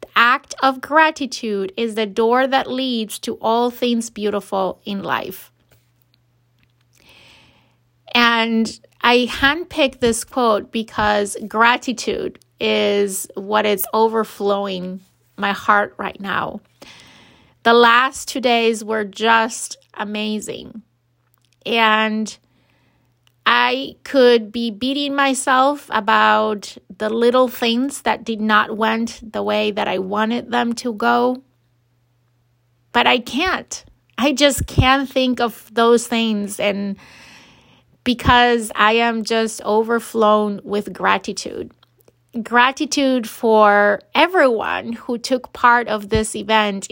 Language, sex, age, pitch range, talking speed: English, female, 30-49, 205-245 Hz, 110 wpm